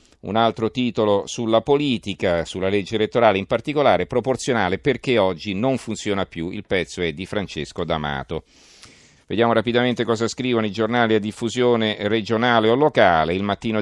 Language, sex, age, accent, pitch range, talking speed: Italian, male, 40-59, native, 90-115 Hz, 150 wpm